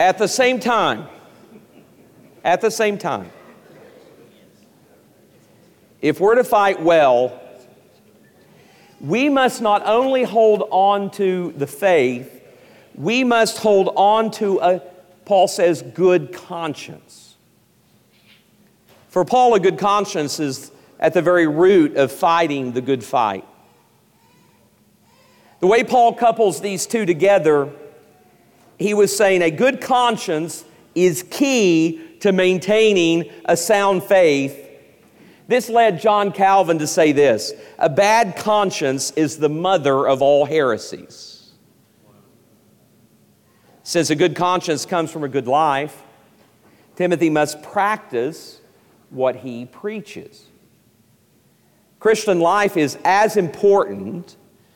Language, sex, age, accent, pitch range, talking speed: English, male, 50-69, American, 155-210 Hz, 115 wpm